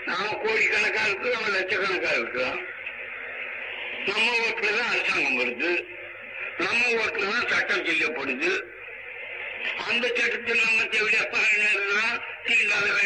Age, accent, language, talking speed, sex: 60-79, native, Tamil, 100 wpm, male